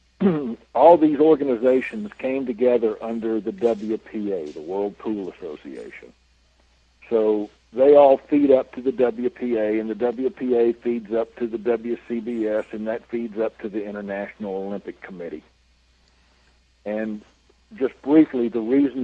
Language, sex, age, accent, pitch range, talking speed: English, male, 60-79, American, 95-125 Hz, 130 wpm